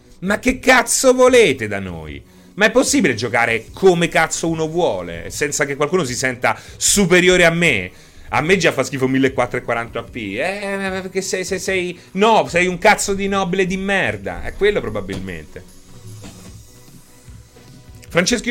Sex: male